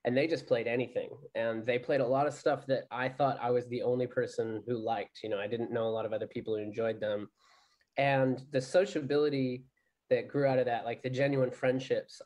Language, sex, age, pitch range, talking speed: English, male, 20-39, 120-140 Hz, 230 wpm